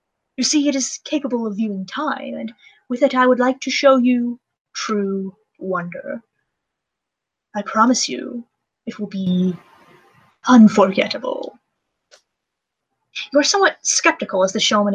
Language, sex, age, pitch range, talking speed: English, female, 20-39, 195-255 Hz, 135 wpm